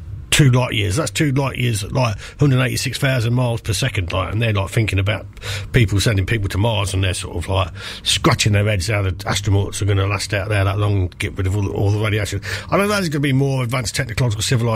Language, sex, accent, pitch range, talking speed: English, male, British, 105-145 Hz, 245 wpm